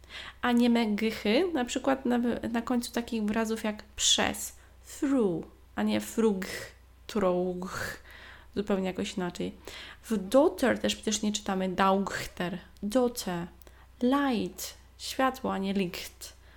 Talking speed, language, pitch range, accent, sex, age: 120 wpm, Polish, 205-260 Hz, native, female, 20-39